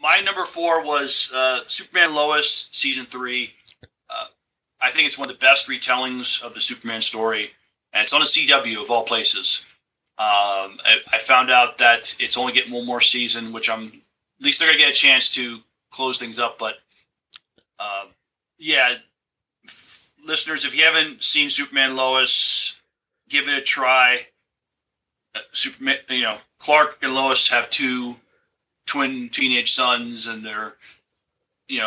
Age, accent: 30-49, American